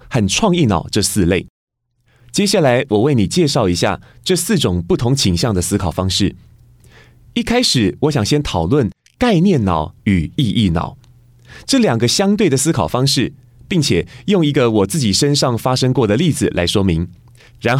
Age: 30-49